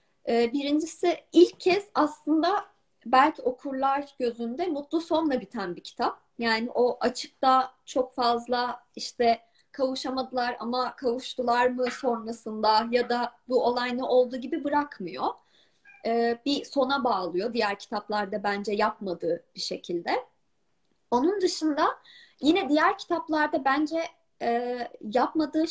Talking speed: 110 wpm